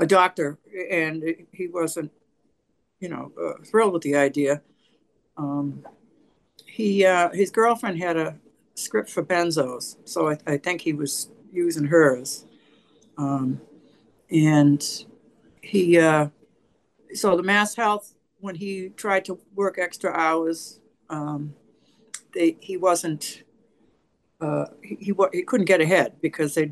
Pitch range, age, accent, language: 150-185 Hz, 60-79, American, English